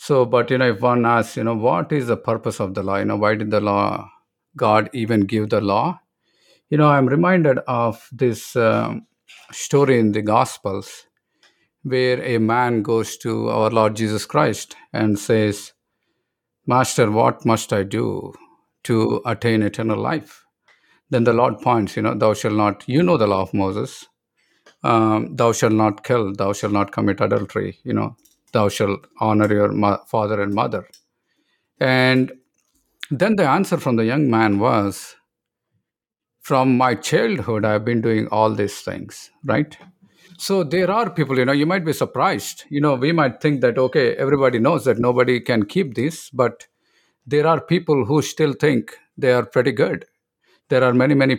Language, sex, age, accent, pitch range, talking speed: English, male, 50-69, Indian, 110-135 Hz, 175 wpm